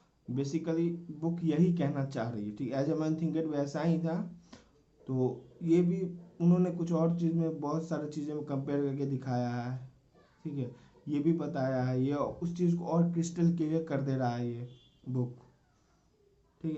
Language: Hindi